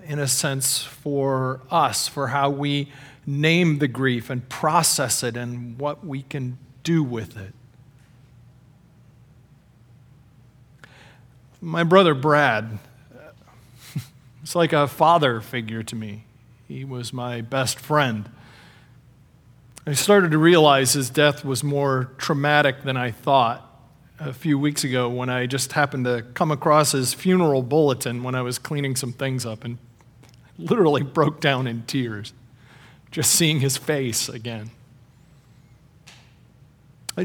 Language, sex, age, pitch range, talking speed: English, male, 40-59, 125-150 Hz, 130 wpm